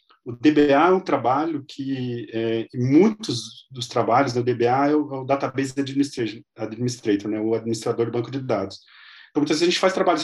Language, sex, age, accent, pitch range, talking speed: Portuguese, male, 40-59, Brazilian, 120-165 Hz, 175 wpm